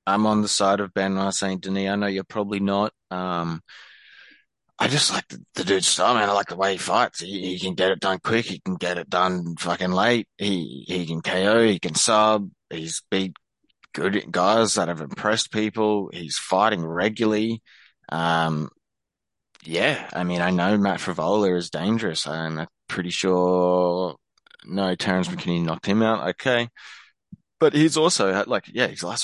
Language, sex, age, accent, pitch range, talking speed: English, male, 20-39, Australian, 90-105 Hz, 180 wpm